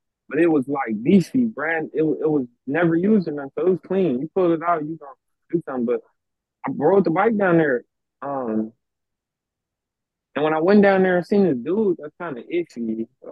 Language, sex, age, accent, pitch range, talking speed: English, male, 20-39, American, 125-170 Hz, 210 wpm